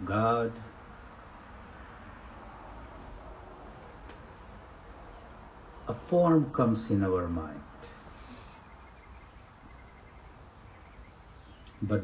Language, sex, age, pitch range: English, male, 60-79, 85-115 Hz